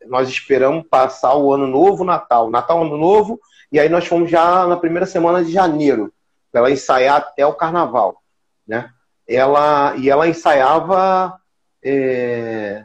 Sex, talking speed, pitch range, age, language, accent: male, 160 wpm, 140-185 Hz, 40-59, Portuguese, Brazilian